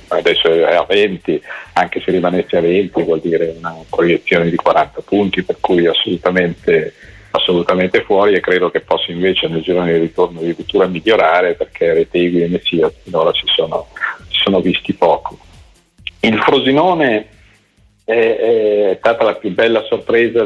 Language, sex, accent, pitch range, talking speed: Italian, male, native, 90-115 Hz, 155 wpm